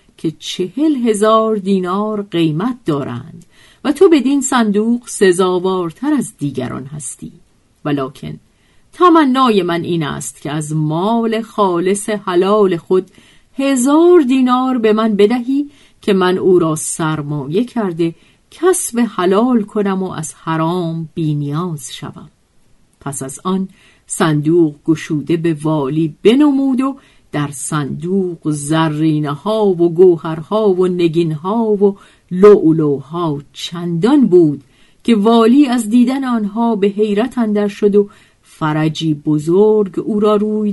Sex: female